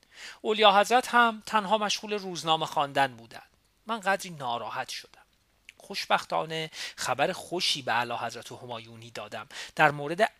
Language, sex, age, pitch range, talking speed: Persian, male, 40-59, 135-195 Hz, 125 wpm